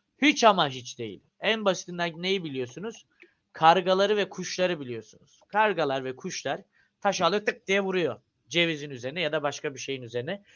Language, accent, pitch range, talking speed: Turkish, native, 150-235 Hz, 155 wpm